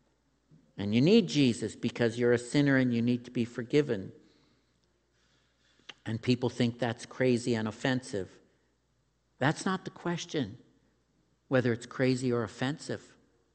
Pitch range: 100-150 Hz